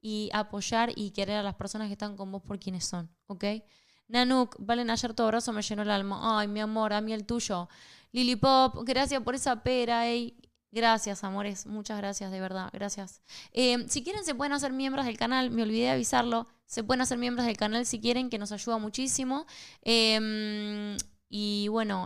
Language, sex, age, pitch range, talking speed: Spanish, female, 10-29, 200-235 Hz, 195 wpm